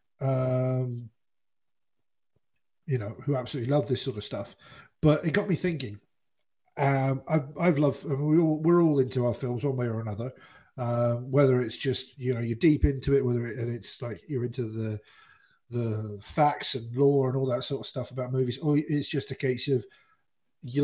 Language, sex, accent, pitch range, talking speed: English, male, British, 120-145 Hz, 200 wpm